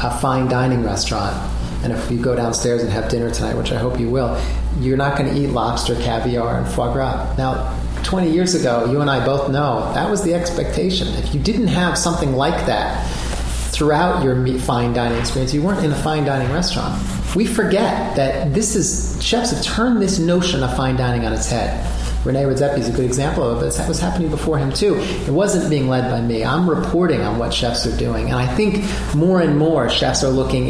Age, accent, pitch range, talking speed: 40-59, American, 120-160 Hz, 220 wpm